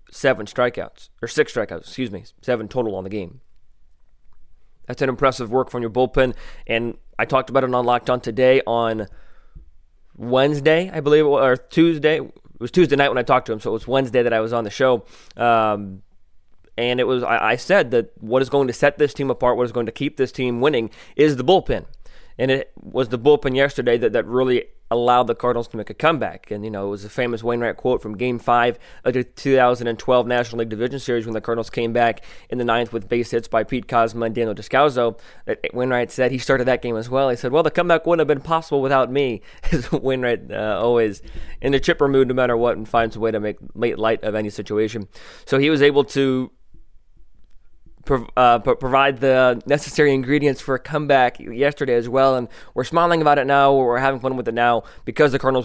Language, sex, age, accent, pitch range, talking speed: English, male, 20-39, American, 115-135 Hz, 220 wpm